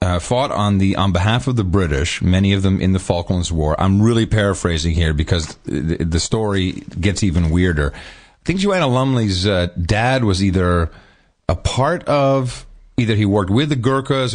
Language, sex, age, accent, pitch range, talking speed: English, male, 40-59, American, 105-150 Hz, 185 wpm